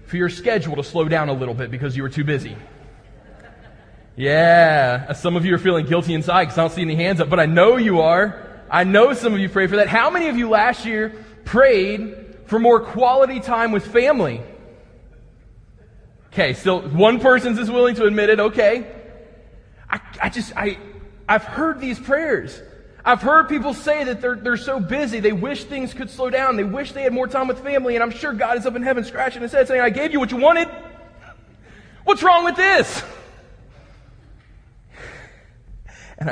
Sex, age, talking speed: male, 20-39, 195 wpm